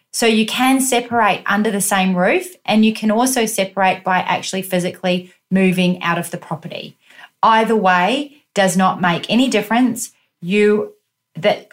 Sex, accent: female, Australian